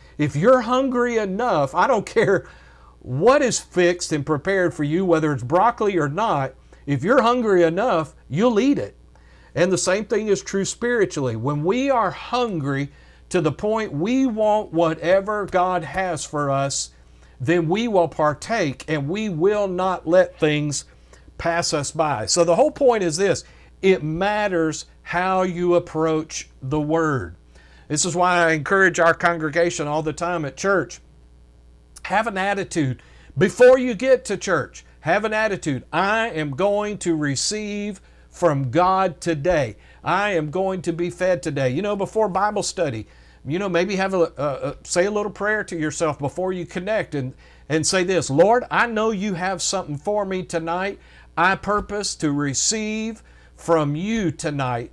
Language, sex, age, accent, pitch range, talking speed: English, male, 50-69, American, 150-200 Hz, 165 wpm